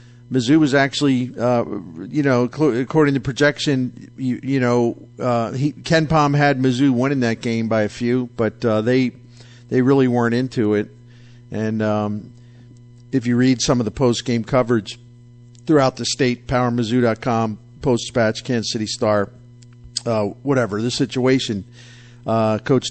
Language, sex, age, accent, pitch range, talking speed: English, male, 50-69, American, 110-125 Hz, 150 wpm